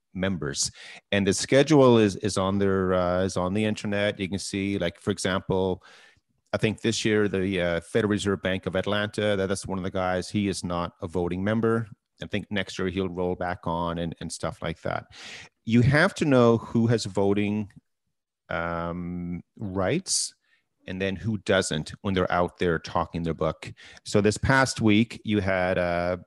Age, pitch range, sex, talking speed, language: 30-49, 90-110 Hz, male, 185 wpm, English